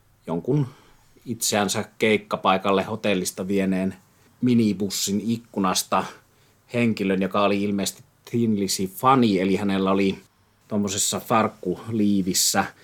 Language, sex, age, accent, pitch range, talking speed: Finnish, male, 30-49, native, 95-110 Hz, 85 wpm